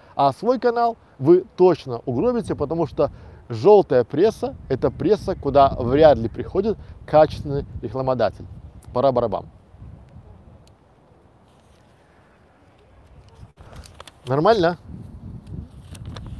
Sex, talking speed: male, 75 wpm